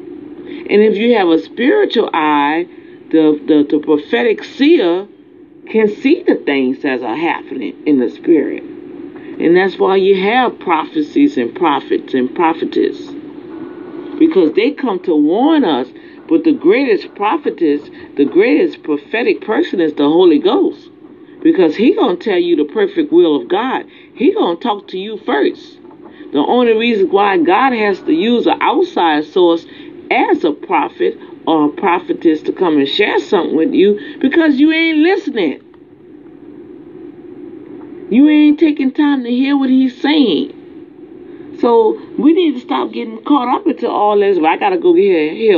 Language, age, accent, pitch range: English, 50-69, American, 275-345 Hz